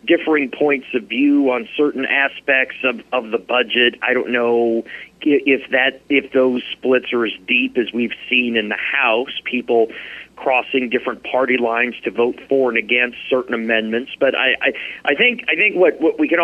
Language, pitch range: English, 120-140 Hz